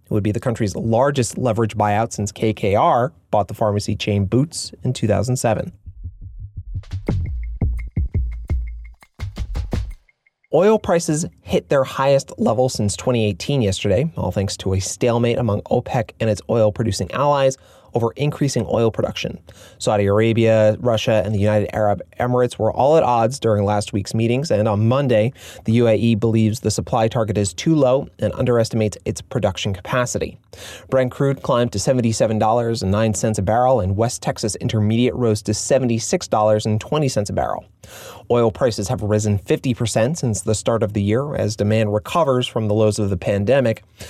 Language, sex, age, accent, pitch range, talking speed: English, male, 30-49, American, 105-120 Hz, 150 wpm